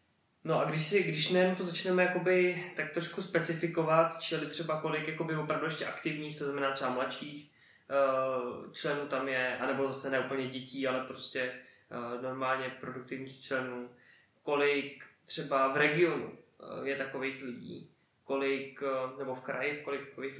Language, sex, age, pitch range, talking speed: Czech, male, 20-39, 135-165 Hz, 145 wpm